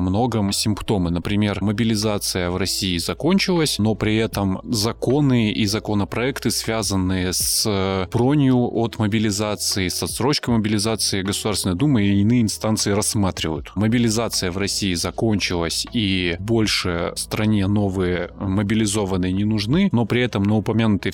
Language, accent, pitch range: Russian, native, 95-115 Hz